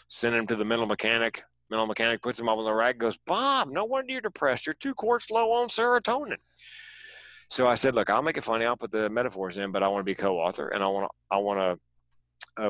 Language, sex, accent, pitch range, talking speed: English, male, American, 95-120 Hz, 250 wpm